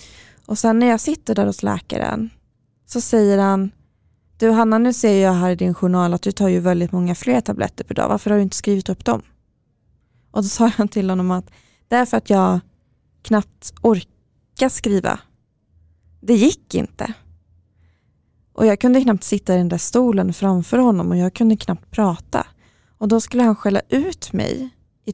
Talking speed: 185 wpm